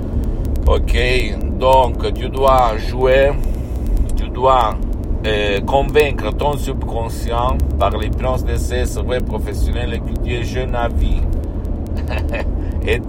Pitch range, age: 75-100 Hz, 60-79